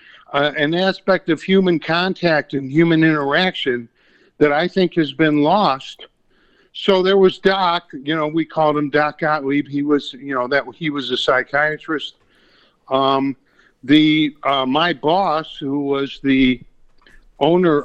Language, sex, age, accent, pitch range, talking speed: English, male, 60-79, American, 130-155 Hz, 150 wpm